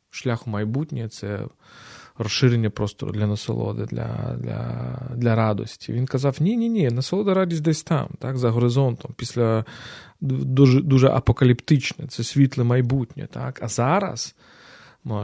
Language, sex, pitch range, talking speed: Ukrainian, male, 115-145 Hz, 140 wpm